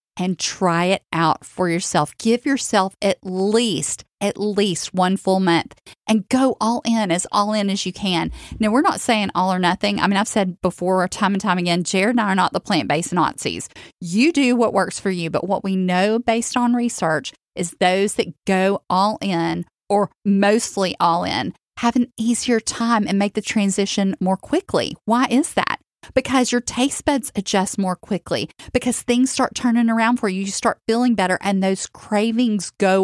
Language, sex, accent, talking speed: English, female, American, 195 wpm